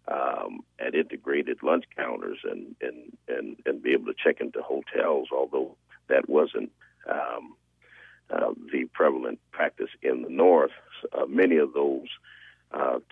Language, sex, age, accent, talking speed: English, male, 50-69, American, 135 wpm